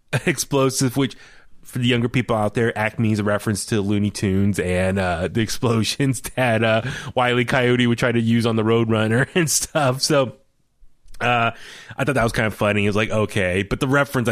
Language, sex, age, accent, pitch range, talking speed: English, male, 20-39, American, 100-125 Hz, 205 wpm